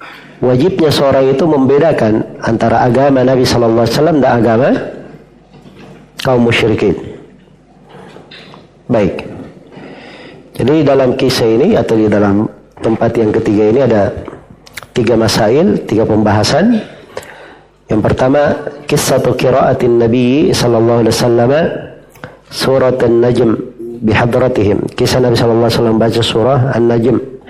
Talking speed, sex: 100 wpm, male